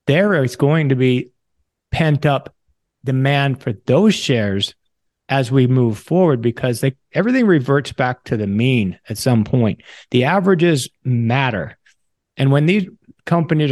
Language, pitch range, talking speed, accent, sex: English, 115-145 Hz, 145 wpm, American, male